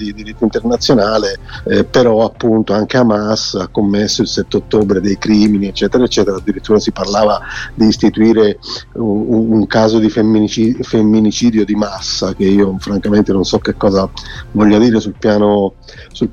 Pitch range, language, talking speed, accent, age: 105-120 Hz, Italian, 155 wpm, native, 40-59